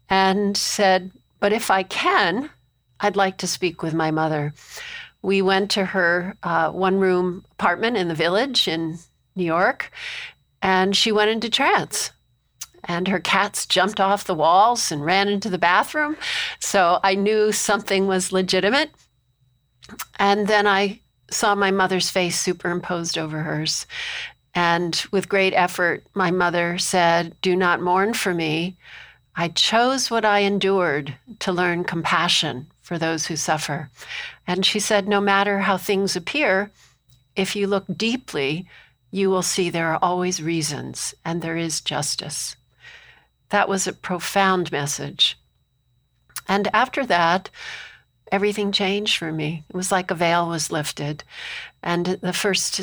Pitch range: 165-200 Hz